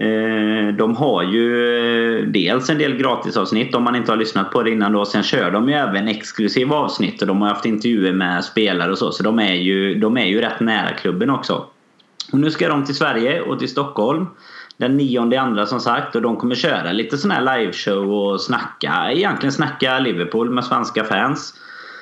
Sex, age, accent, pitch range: male, 30-49, native, 100-125 Hz